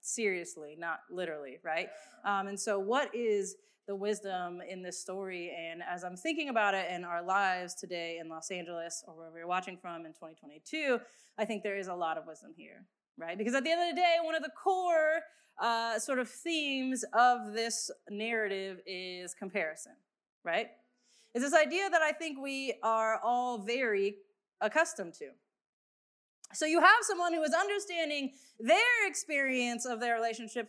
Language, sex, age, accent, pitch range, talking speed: English, female, 20-39, American, 195-305 Hz, 175 wpm